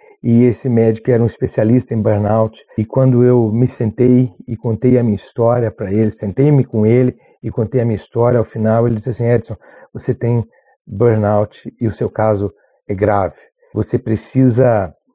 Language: Portuguese